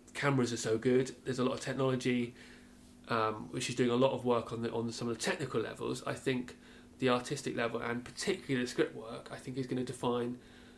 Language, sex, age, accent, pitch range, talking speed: English, male, 30-49, British, 115-130 Hz, 230 wpm